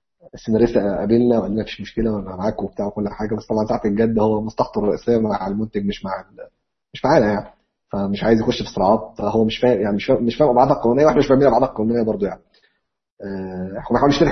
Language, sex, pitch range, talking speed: Arabic, male, 105-130 Hz, 205 wpm